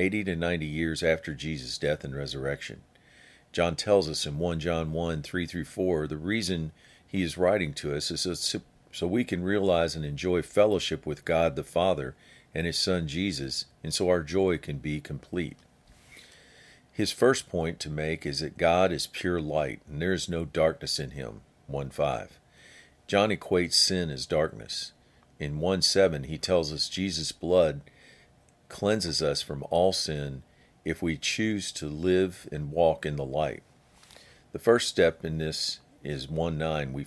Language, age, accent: English, 50-69, American